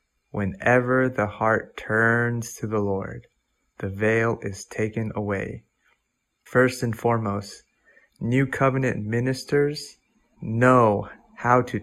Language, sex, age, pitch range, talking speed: English, male, 20-39, 115-130 Hz, 105 wpm